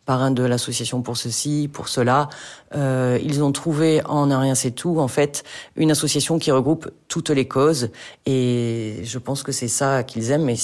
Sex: female